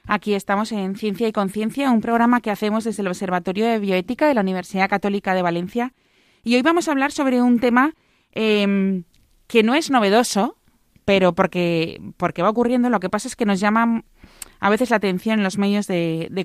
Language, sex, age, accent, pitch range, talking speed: Spanish, female, 20-39, Spanish, 175-220 Hz, 200 wpm